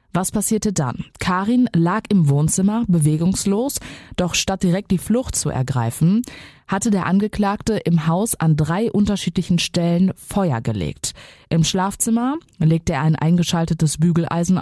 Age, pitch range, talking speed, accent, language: 20-39, 145-190 Hz, 135 wpm, German, German